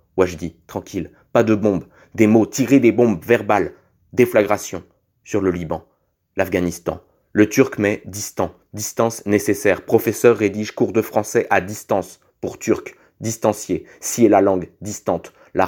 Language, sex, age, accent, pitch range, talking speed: French, male, 30-49, French, 95-110 Hz, 140 wpm